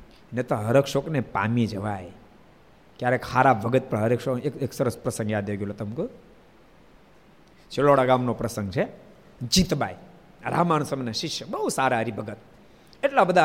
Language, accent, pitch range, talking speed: Gujarati, native, 120-170 Hz, 135 wpm